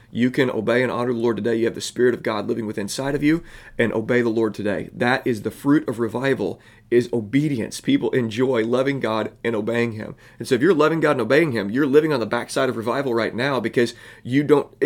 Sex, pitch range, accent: male, 115-135 Hz, American